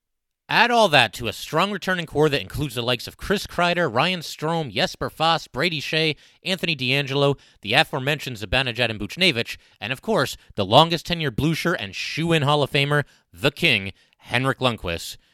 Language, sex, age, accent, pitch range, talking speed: English, male, 30-49, American, 110-155 Hz, 170 wpm